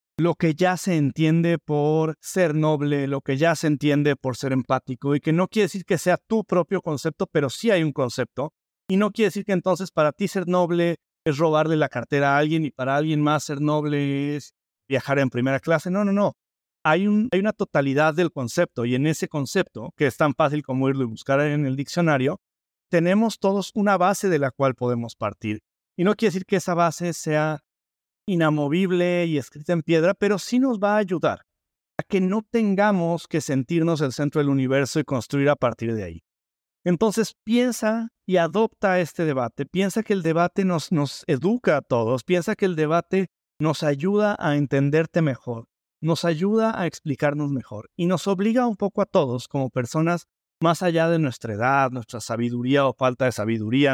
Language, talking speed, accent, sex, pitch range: Spanish, 195 wpm, Mexican, male, 135-185 Hz